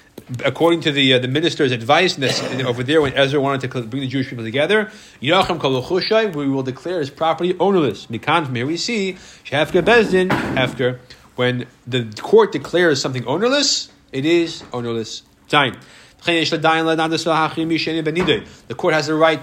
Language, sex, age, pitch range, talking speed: English, male, 30-49, 125-160 Hz, 140 wpm